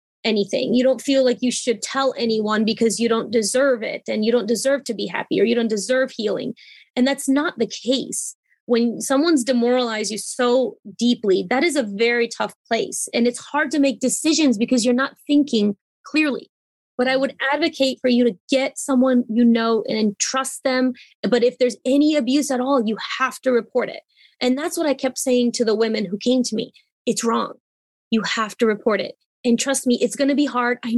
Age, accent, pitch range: 20-39, American, 220-265 Hz